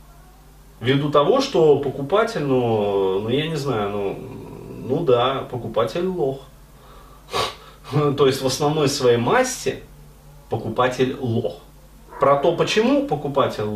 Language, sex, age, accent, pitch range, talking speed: Russian, male, 30-49, native, 115-145 Hz, 115 wpm